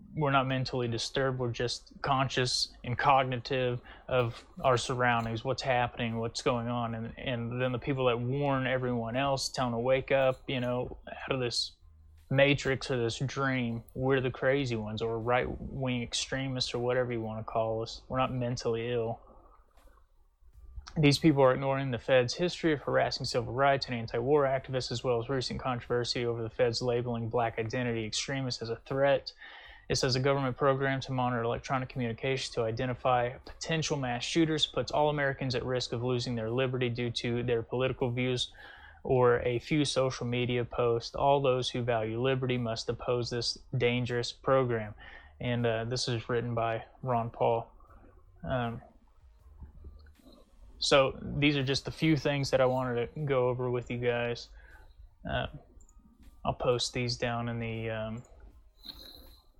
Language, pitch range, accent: English, 115-130 Hz, American